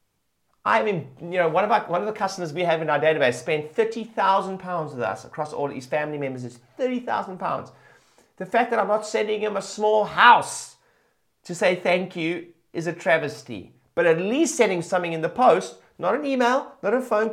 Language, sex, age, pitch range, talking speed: English, male, 30-49, 145-210 Hz, 200 wpm